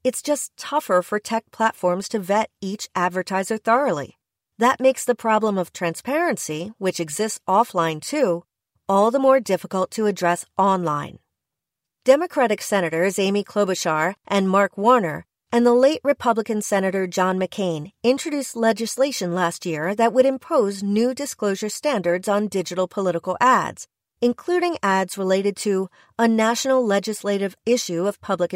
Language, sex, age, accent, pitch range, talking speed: English, female, 40-59, American, 185-240 Hz, 140 wpm